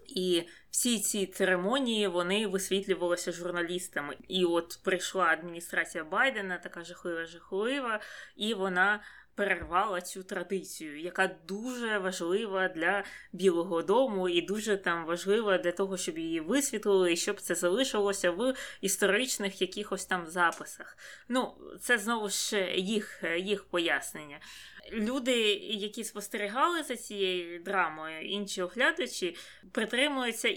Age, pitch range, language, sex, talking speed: 20-39, 180-225 Hz, Ukrainian, female, 120 wpm